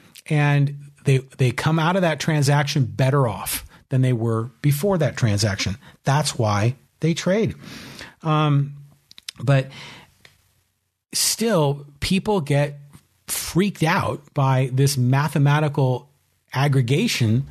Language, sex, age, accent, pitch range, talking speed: English, male, 40-59, American, 130-160 Hz, 105 wpm